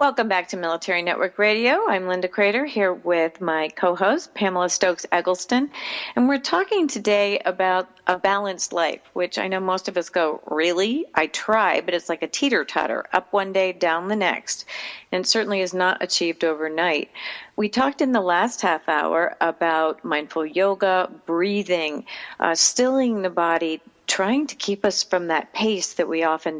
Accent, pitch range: American, 170-220 Hz